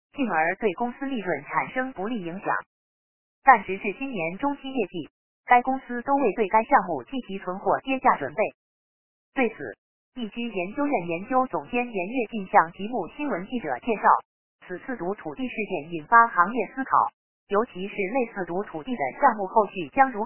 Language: Chinese